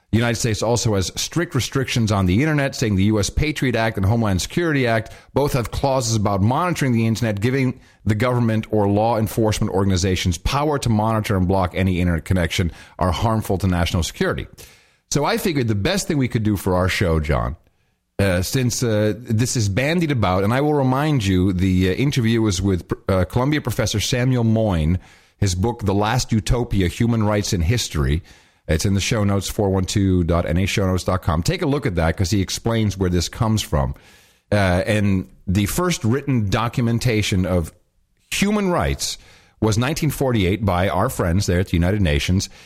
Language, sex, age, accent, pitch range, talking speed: English, male, 40-59, American, 95-130 Hz, 180 wpm